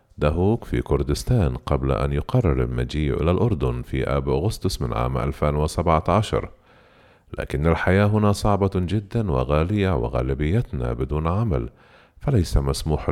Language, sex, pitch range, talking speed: Arabic, male, 70-95 Hz, 120 wpm